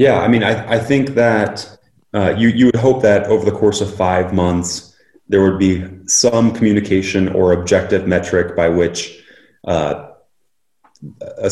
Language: English